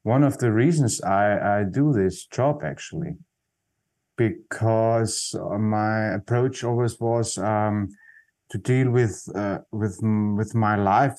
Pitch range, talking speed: 115-150 Hz, 130 wpm